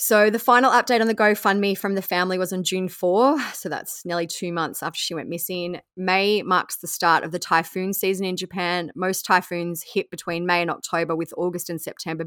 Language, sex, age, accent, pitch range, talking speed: English, female, 20-39, Australian, 160-185 Hz, 215 wpm